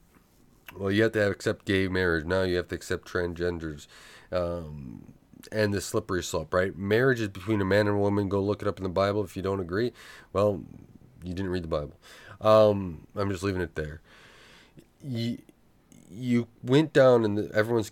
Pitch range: 90-110 Hz